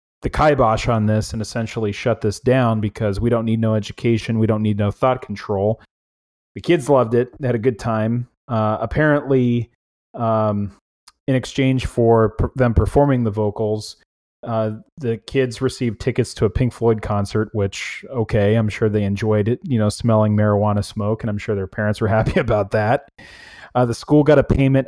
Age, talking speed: 30-49, 185 wpm